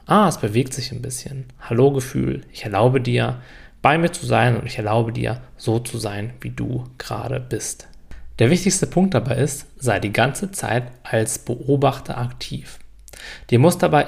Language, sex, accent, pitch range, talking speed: German, male, German, 110-140 Hz, 175 wpm